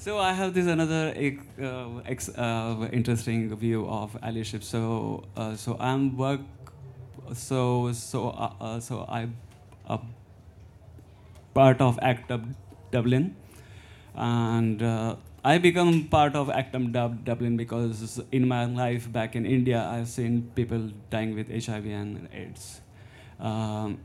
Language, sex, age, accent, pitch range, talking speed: English, male, 20-39, Indian, 110-130 Hz, 130 wpm